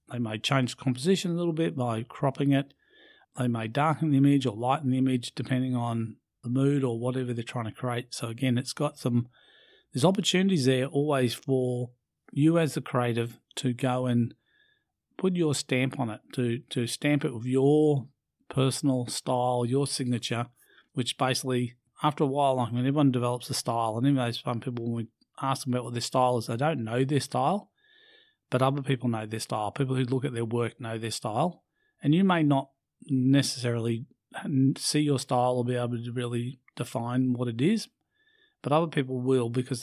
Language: English